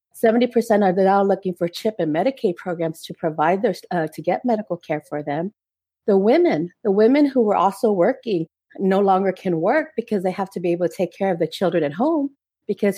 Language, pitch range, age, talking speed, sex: English, 180-230 Hz, 40-59, 215 wpm, female